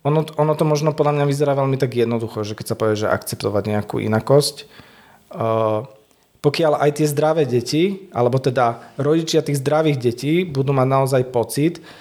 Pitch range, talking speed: 125-145 Hz, 170 wpm